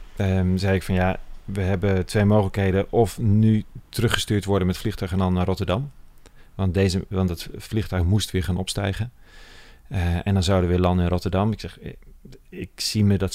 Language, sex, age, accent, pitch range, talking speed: Dutch, male, 40-59, Dutch, 90-105 Hz, 200 wpm